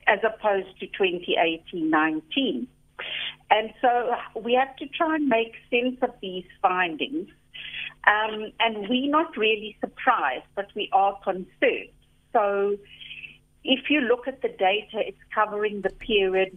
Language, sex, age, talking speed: English, female, 60-79, 135 wpm